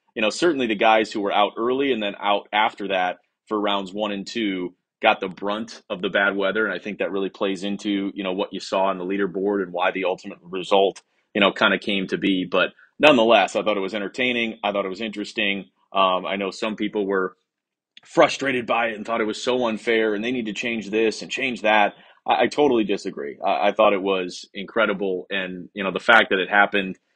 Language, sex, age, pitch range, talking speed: English, male, 30-49, 95-105 Hz, 235 wpm